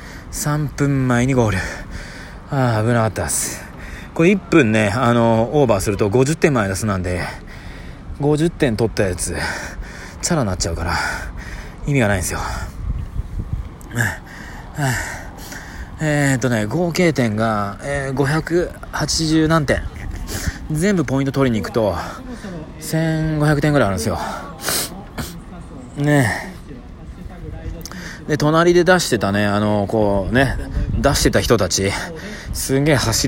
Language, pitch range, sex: Japanese, 100-150 Hz, male